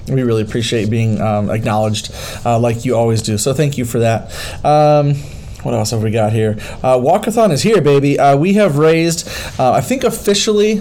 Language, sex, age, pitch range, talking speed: English, male, 30-49, 125-160 Hz, 200 wpm